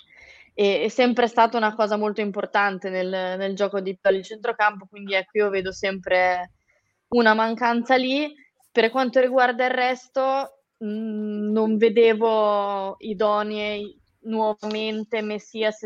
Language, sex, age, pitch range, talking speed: Italian, female, 20-39, 205-230 Hz, 125 wpm